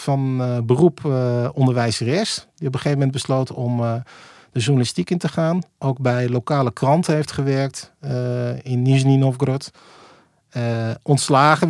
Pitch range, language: 125-150 Hz, Dutch